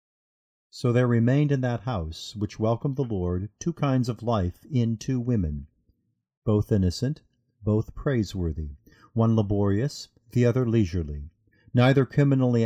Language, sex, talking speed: English, male, 135 wpm